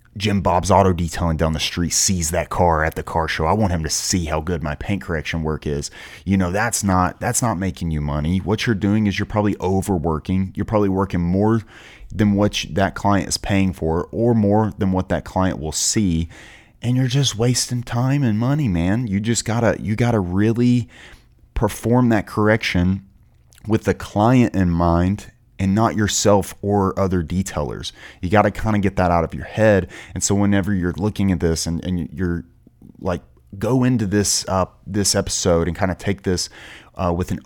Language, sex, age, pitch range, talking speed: English, male, 30-49, 85-105 Hz, 200 wpm